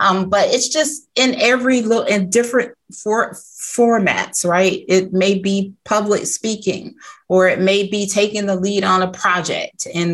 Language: English